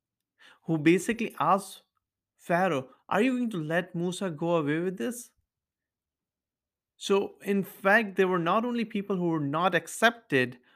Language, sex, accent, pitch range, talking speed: English, male, Indian, 135-190 Hz, 145 wpm